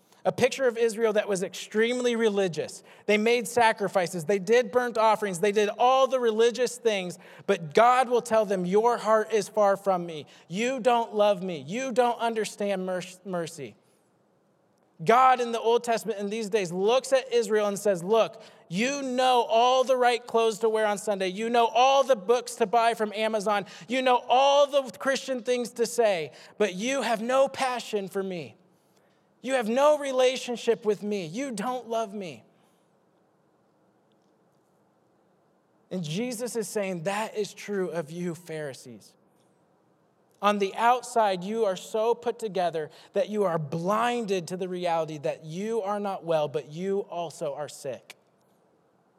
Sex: male